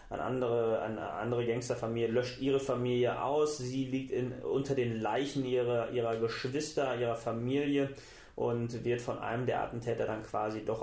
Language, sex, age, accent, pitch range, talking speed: German, male, 30-49, German, 115-135 Hz, 150 wpm